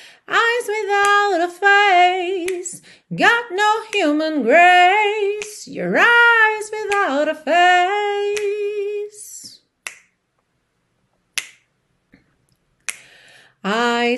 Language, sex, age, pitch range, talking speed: Portuguese, female, 40-59, 330-410 Hz, 60 wpm